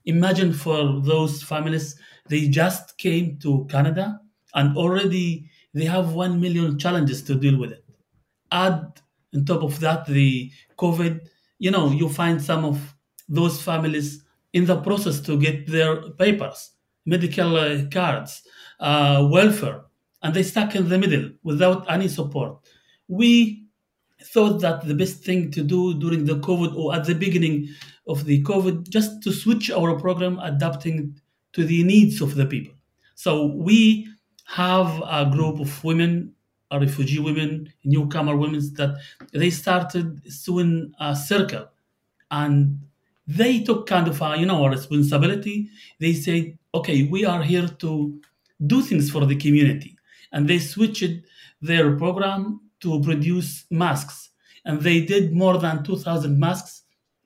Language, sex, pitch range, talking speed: English, male, 145-180 Hz, 145 wpm